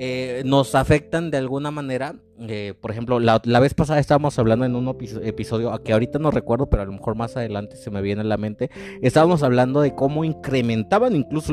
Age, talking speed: 30-49, 215 wpm